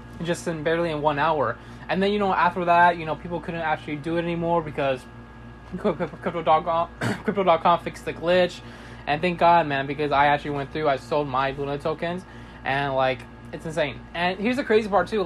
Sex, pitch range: male, 140-180 Hz